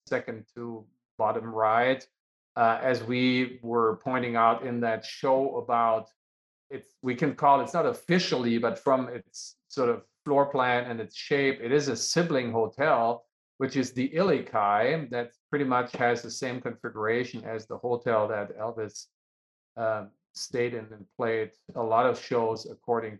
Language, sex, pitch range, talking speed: English, male, 115-140 Hz, 165 wpm